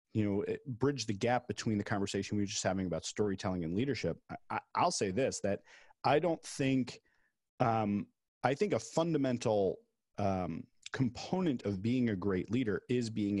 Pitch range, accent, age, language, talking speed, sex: 100-130 Hz, American, 30-49, English, 165 wpm, male